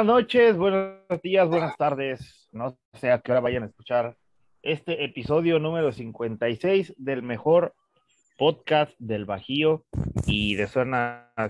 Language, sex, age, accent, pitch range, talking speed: Spanish, male, 30-49, Mexican, 110-160 Hz, 135 wpm